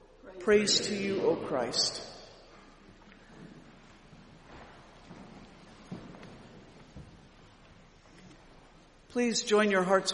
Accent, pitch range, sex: American, 180-220 Hz, female